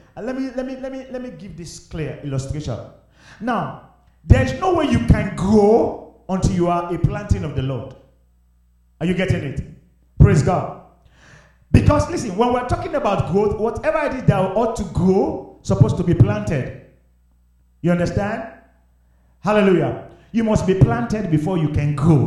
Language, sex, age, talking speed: English, male, 40-59, 160 wpm